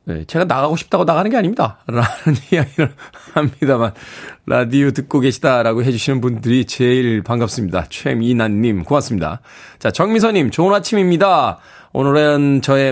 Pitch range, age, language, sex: 115-150 Hz, 20-39, Korean, male